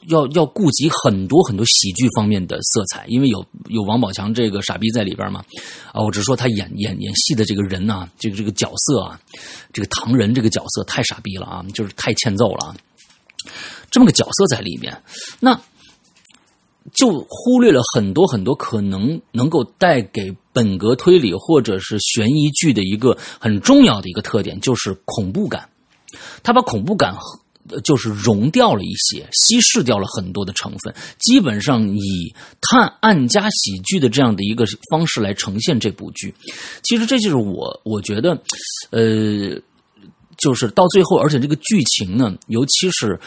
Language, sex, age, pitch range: Chinese, male, 30-49, 105-160 Hz